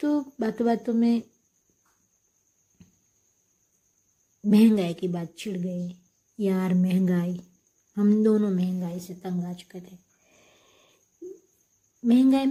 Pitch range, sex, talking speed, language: 185-230 Hz, female, 95 wpm, Hindi